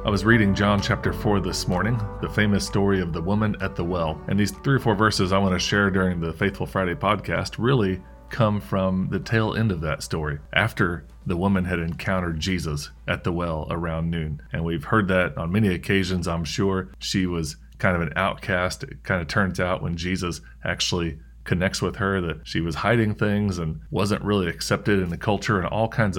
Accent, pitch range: American, 80-105 Hz